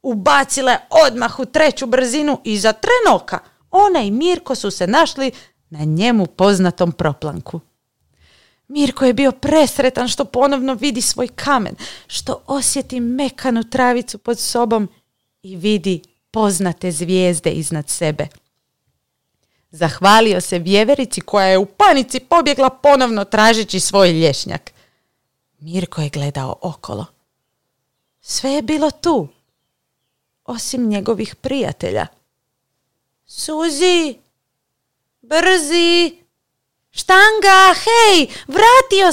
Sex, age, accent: female, 40-59, native